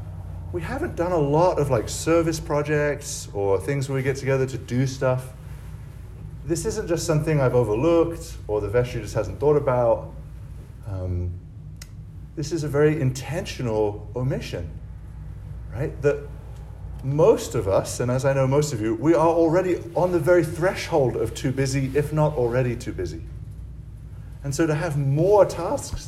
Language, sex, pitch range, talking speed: English, male, 105-140 Hz, 165 wpm